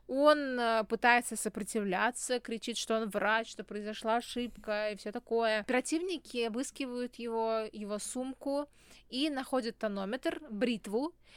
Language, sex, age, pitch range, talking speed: Russian, female, 20-39, 215-250 Hz, 115 wpm